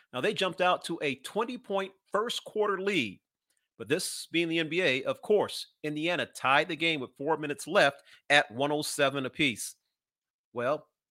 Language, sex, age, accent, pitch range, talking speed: English, male, 40-59, American, 140-190 Hz, 150 wpm